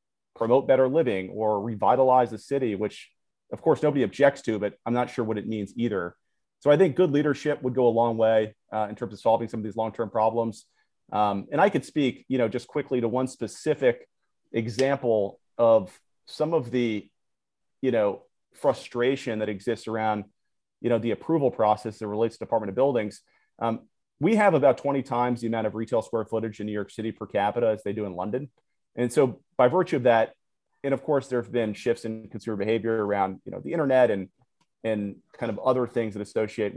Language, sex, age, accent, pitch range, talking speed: English, male, 40-59, American, 105-130 Hz, 205 wpm